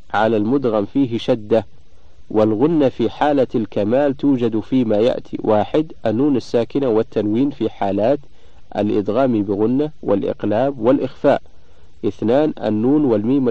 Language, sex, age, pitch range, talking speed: Arabic, male, 50-69, 105-135 Hz, 105 wpm